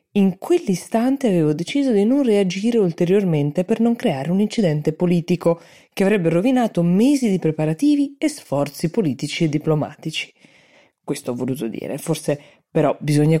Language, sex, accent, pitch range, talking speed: Italian, female, native, 145-200 Hz, 145 wpm